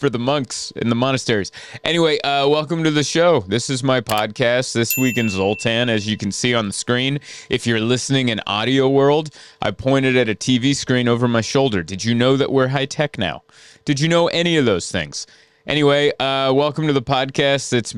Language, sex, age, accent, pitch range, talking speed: English, male, 30-49, American, 115-140 Hz, 215 wpm